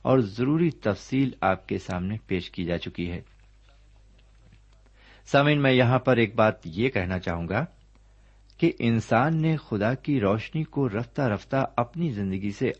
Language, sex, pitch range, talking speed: Urdu, male, 95-130 Hz, 155 wpm